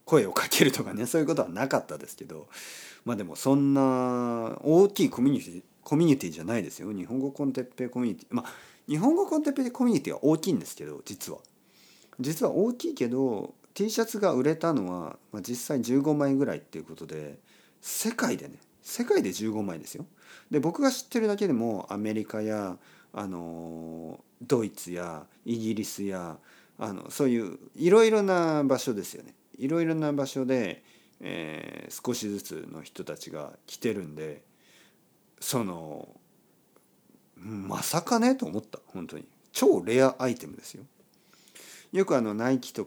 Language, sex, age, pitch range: Japanese, male, 40-59, 100-170 Hz